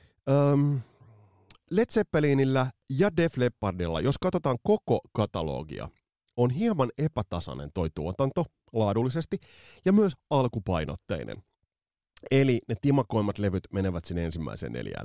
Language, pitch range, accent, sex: Finnish, 95-140 Hz, native, male